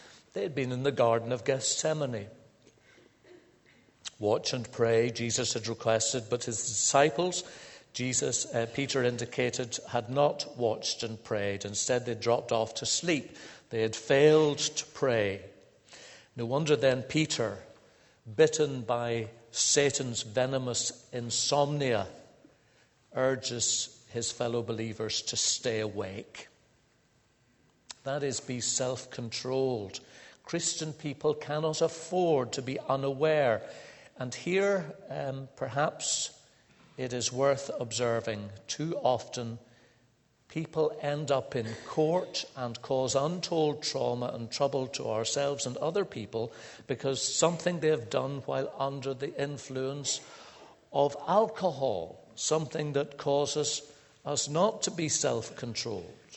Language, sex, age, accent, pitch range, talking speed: English, male, 60-79, British, 120-145 Hz, 115 wpm